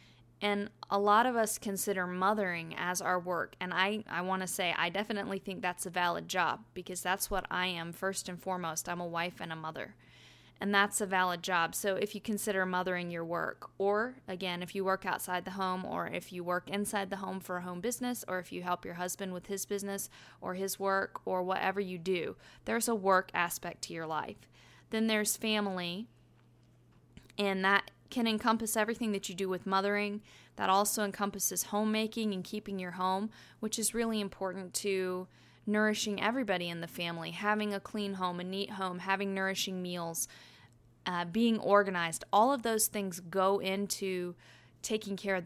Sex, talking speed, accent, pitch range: female, 190 wpm, American, 180-205 Hz